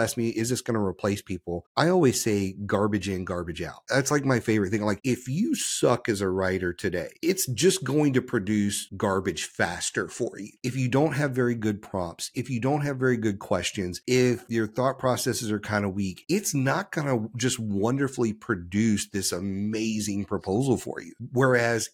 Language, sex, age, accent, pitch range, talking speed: English, male, 40-59, American, 100-130 Hz, 195 wpm